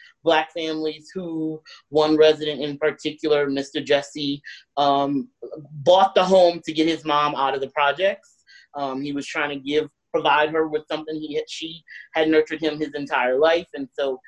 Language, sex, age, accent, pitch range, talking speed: English, male, 30-49, American, 150-190 Hz, 175 wpm